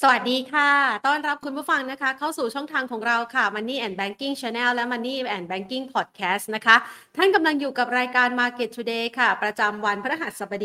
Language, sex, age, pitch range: Thai, female, 30-49, 205-250 Hz